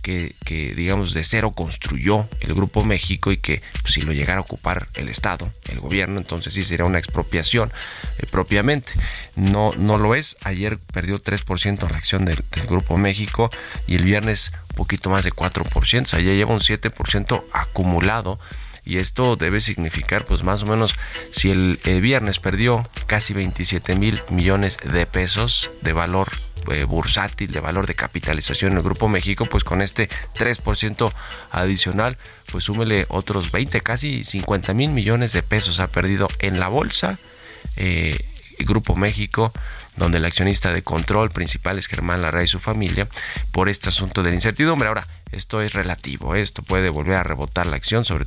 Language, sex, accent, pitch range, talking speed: Spanish, male, Mexican, 85-105 Hz, 175 wpm